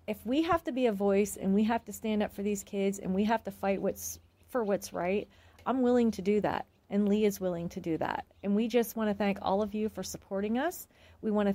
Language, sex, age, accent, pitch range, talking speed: English, female, 40-59, American, 200-235 Hz, 270 wpm